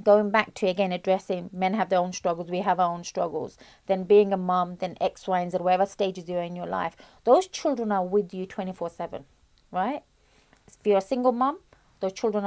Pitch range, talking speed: 185-215 Hz, 215 wpm